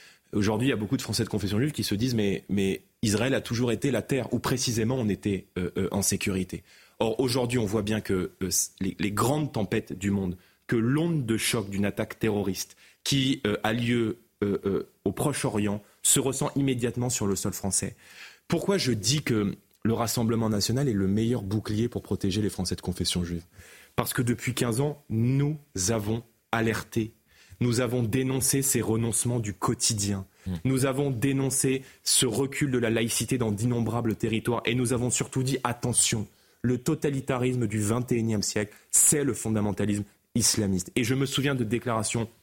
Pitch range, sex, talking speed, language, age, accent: 105-130 Hz, male, 185 wpm, French, 30-49, French